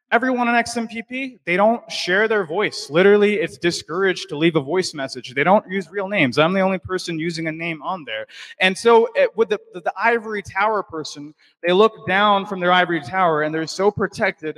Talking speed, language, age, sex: 210 wpm, English, 20-39, male